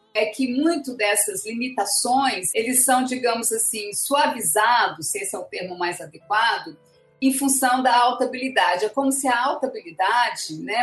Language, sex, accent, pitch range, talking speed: Portuguese, female, Brazilian, 210-260 Hz, 160 wpm